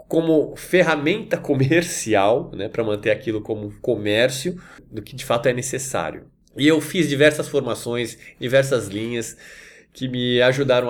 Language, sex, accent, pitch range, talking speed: Portuguese, male, Brazilian, 120-170 Hz, 140 wpm